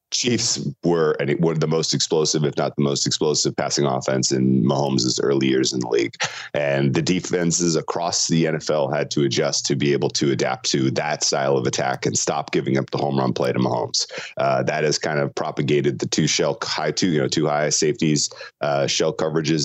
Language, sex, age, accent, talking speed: English, male, 30-49, American, 210 wpm